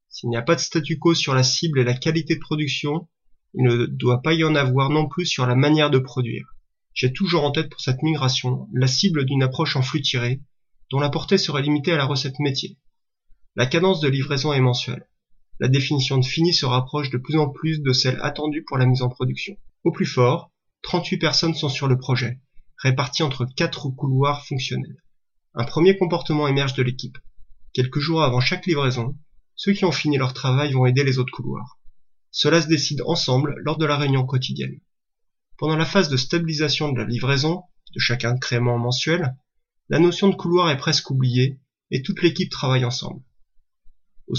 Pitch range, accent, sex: 130-165 Hz, French, male